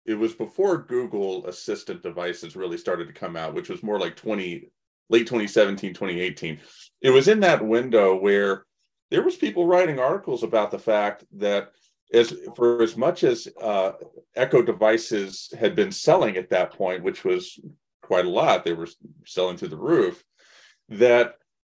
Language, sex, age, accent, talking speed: English, male, 40-59, American, 165 wpm